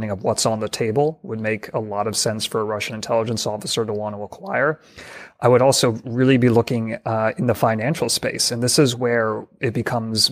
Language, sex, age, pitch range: English, male, 30-49, 110-120 Hz